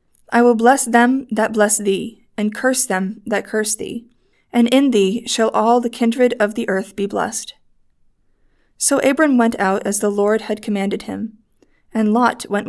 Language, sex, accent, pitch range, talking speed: English, female, American, 205-240 Hz, 180 wpm